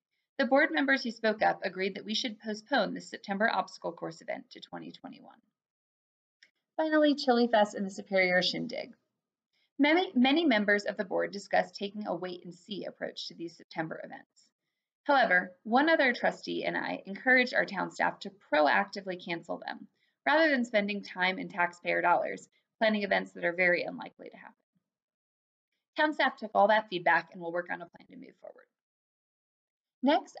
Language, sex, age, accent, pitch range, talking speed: English, female, 20-39, American, 195-265 Hz, 170 wpm